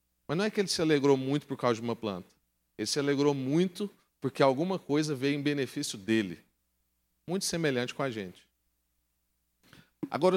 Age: 40-59